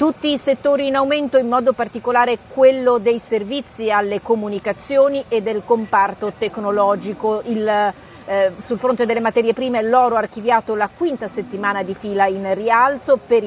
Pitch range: 195-240 Hz